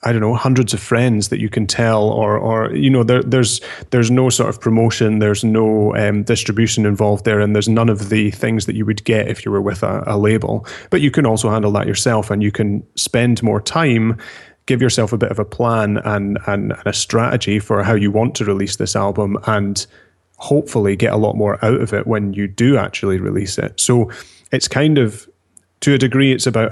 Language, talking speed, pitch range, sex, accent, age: English, 225 wpm, 105-120 Hz, male, British, 30-49